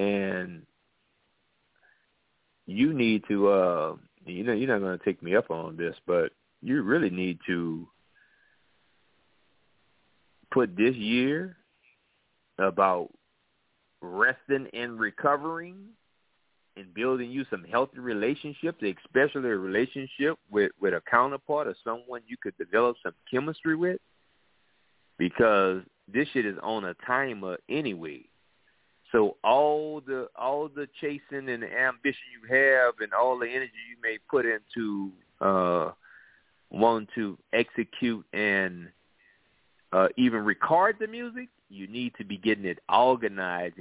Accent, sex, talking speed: American, male, 125 wpm